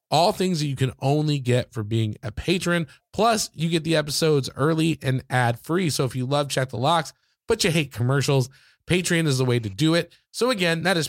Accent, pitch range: American, 120-155 Hz